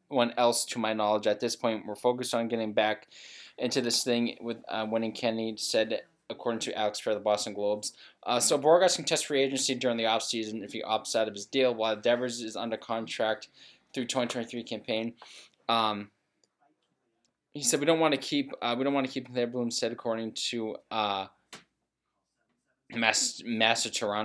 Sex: male